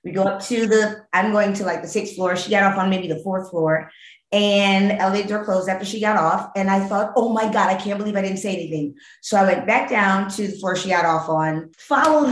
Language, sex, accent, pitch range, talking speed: English, female, American, 180-210 Hz, 260 wpm